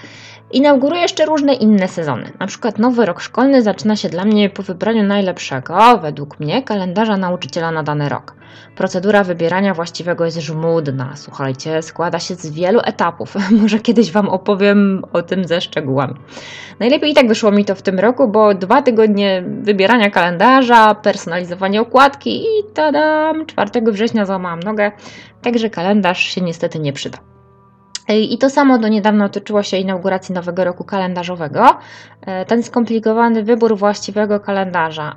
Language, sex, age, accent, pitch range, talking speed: Polish, female, 20-39, native, 180-250 Hz, 150 wpm